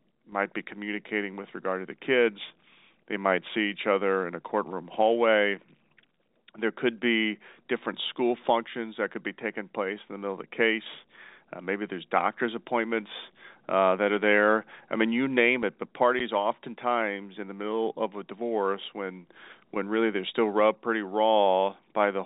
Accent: American